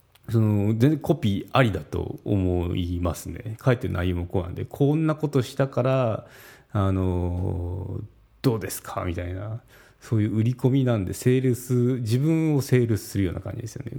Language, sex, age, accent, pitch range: Japanese, male, 40-59, native, 95-125 Hz